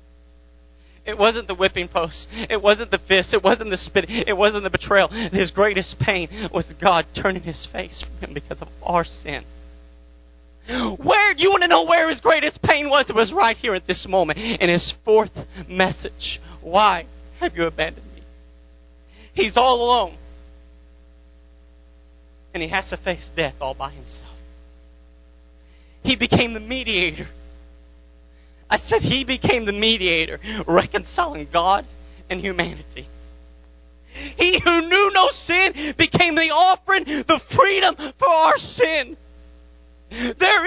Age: 30-49